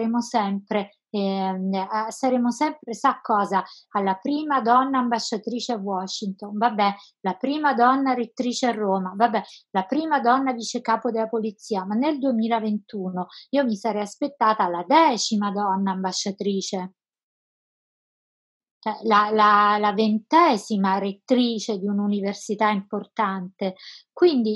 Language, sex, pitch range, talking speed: Italian, female, 200-245 Hz, 110 wpm